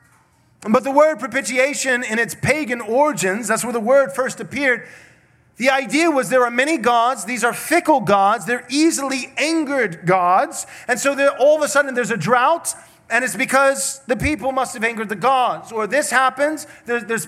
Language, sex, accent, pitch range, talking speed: English, male, American, 205-275 Hz, 185 wpm